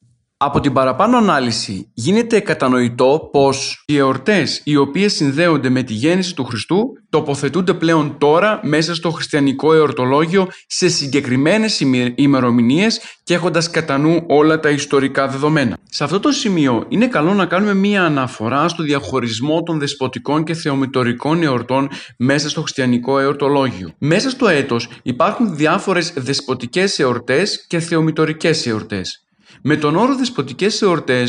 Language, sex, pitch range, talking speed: Greek, male, 135-185 Hz, 130 wpm